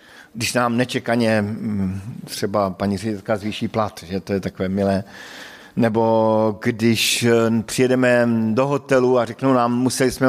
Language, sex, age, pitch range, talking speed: Slovak, male, 50-69, 110-135 Hz, 135 wpm